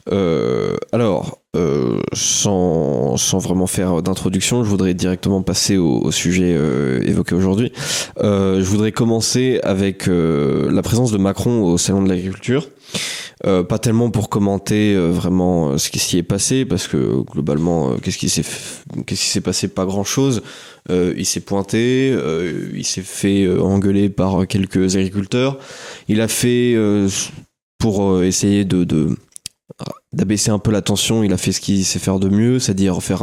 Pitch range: 95-115 Hz